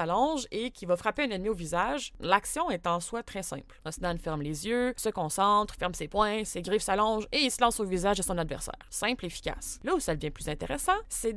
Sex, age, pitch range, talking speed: female, 20-39, 185-260 Hz, 245 wpm